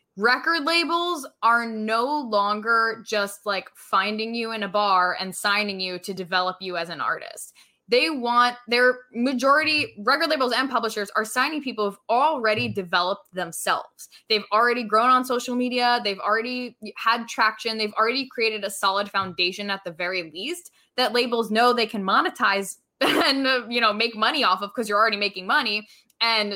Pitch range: 200-255 Hz